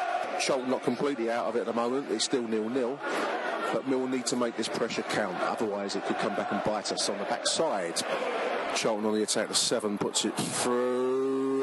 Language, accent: English, British